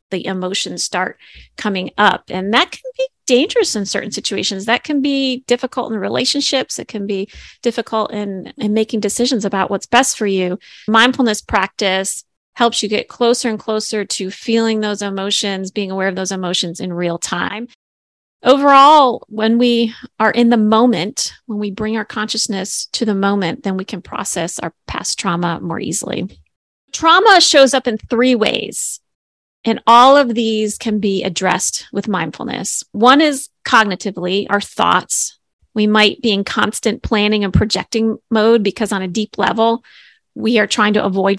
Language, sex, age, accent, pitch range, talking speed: English, female, 30-49, American, 200-240 Hz, 165 wpm